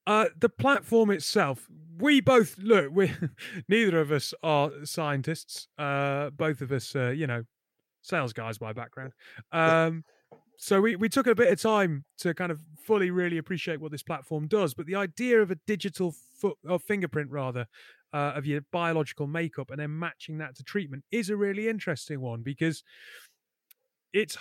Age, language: 30-49, English